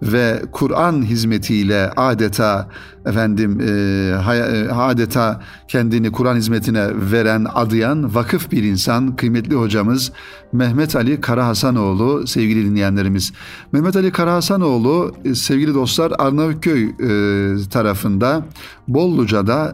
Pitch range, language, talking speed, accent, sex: 105-140 Hz, Turkish, 105 wpm, native, male